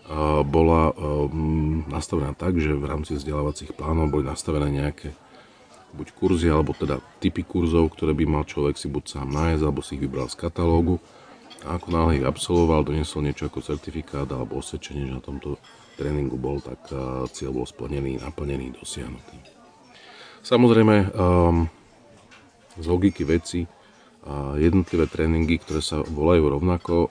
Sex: male